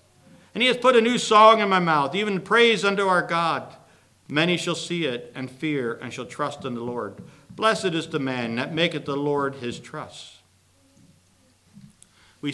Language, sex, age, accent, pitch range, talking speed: English, male, 60-79, American, 120-160 Hz, 180 wpm